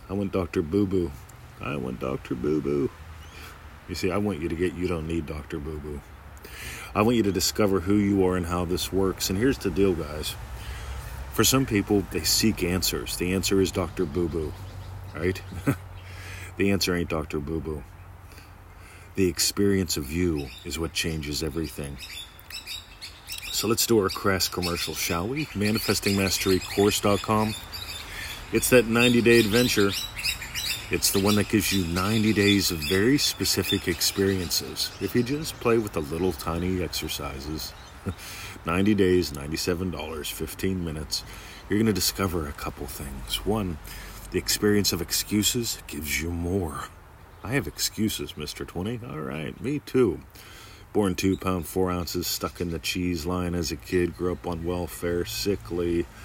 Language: English